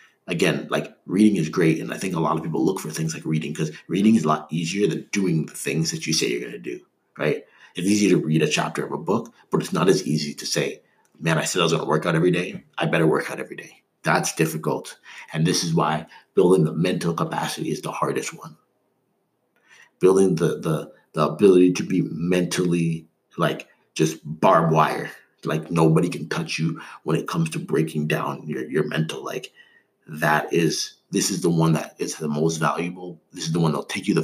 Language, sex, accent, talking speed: English, male, American, 225 wpm